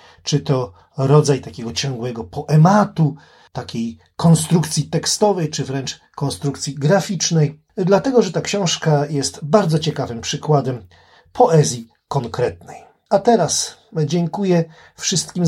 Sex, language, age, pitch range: male, Polish, 40-59, 125-160 Hz